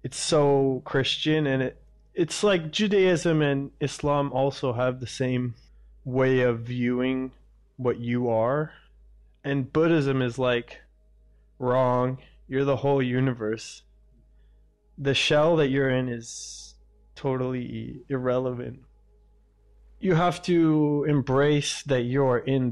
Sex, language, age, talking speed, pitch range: male, English, 20-39, 115 wpm, 120-140 Hz